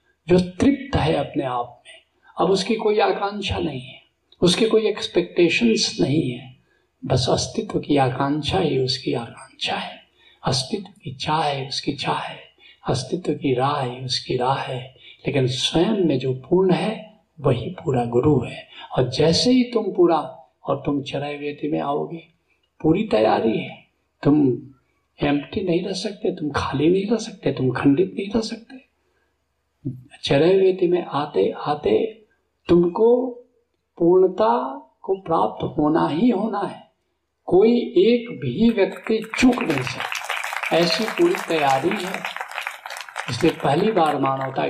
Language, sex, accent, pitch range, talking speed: Hindi, male, native, 140-220 Hz, 140 wpm